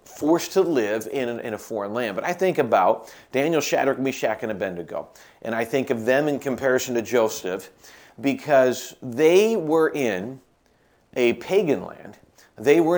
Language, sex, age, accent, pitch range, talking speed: English, male, 40-59, American, 120-155 Hz, 155 wpm